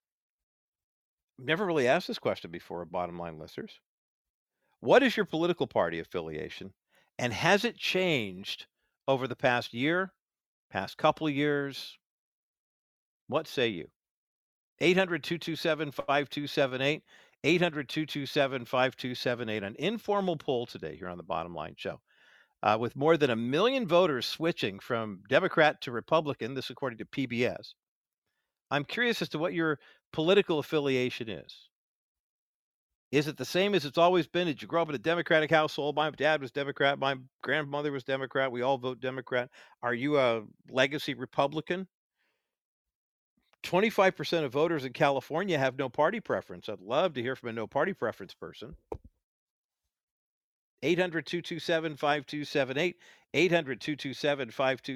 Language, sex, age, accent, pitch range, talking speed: English, male, 50-69, American, 130-165 Hz, 130 wpm